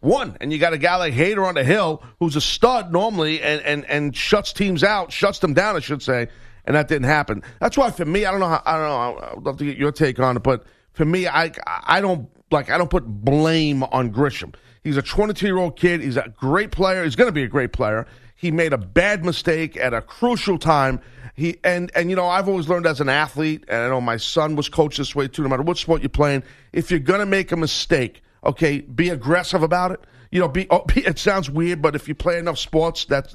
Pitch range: 140-180 Hz